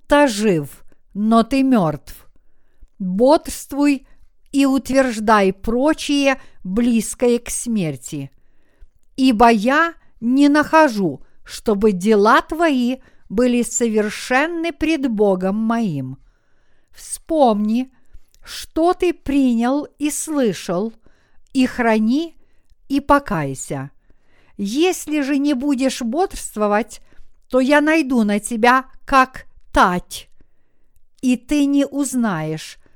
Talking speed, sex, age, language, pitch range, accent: 85 wpm, female, 50-69, Russian, 215-280 Hz, native